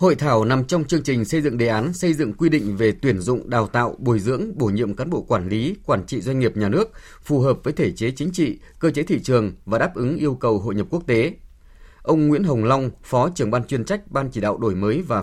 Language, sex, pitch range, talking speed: Vietnamese, male, 110-155 Hz, 270 wpm